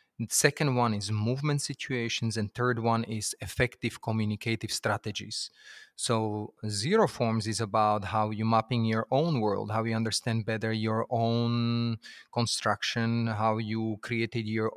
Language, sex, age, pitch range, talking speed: Finnish, male, 30-49, 110-130 Hz, 140 wpm